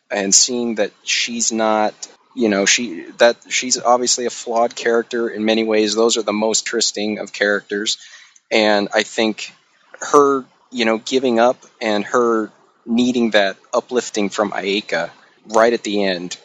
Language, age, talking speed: English, 30-49, 155 wpm